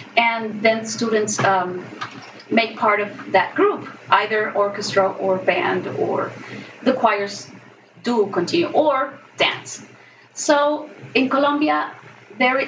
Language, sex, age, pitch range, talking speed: English, female, 30-49, 210-255 Hz, 115 wpm